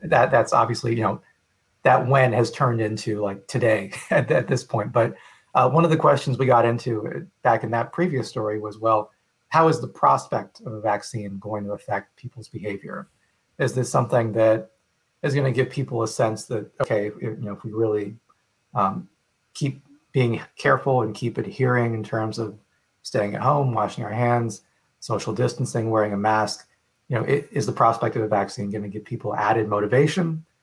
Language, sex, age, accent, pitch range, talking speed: English, male, 40-59, American, 105-125 Hz, 190 wpm